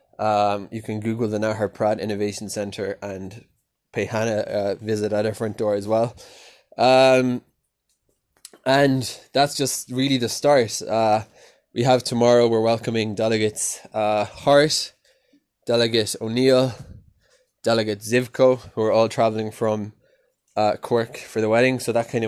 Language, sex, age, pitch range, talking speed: English, male, 20-39, 105-120 Hz, 145 wpm